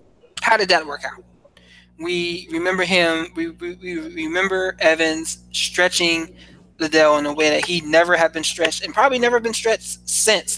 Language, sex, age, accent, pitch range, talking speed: English, male, 20-39, American, 145-180 Hz, 170 wpm